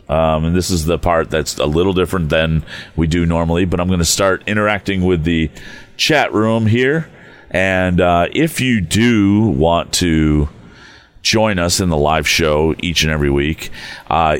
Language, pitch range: English, 80-95 Hz